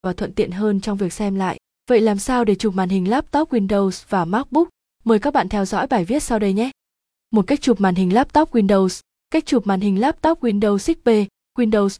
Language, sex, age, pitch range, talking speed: Vietnamese, female, 20-39, 190-240 Hz, 220 wpm